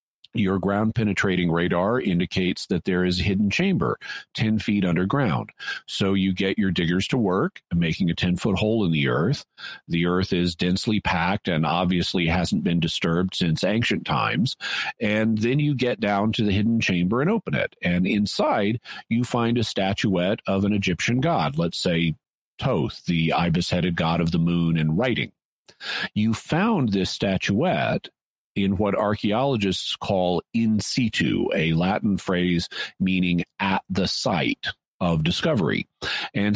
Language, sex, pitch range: English, male, 90-110 Hz